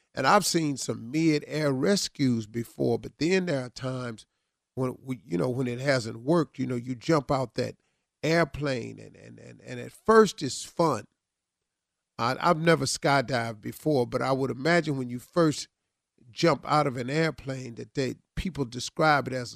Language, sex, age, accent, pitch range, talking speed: English, male, 40-59, American, 130-165 Hz, 180 wpm